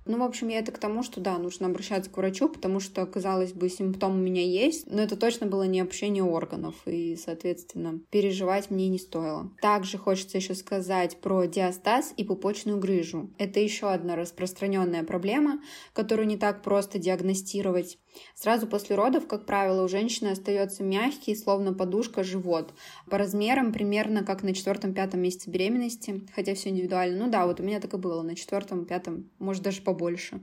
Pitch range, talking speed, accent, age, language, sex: 185-215 Hz, 180 wpm, native, 20-39, Russian, female